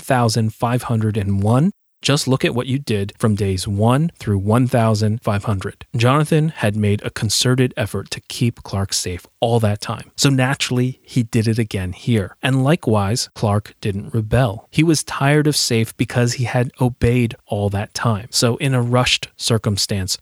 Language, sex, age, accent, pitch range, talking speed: English, male, 30-49, American, 105-135 Hz, 160 wpm